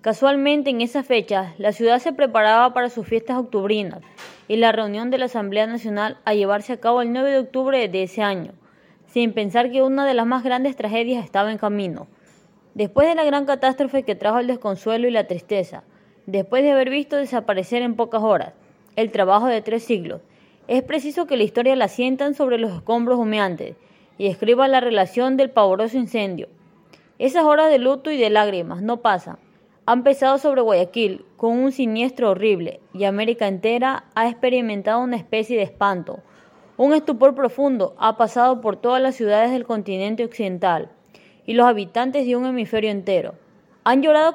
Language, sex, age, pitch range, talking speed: Spanish, female, 20-39, 210-260 Hz, 180 wpm